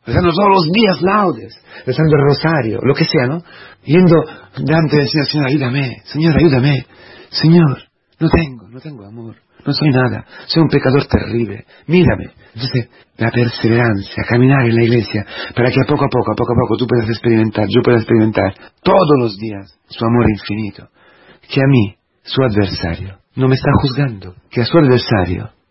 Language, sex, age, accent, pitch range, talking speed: Spanish, male, 40-59, Italian, 105-145 Hz, 175 wpm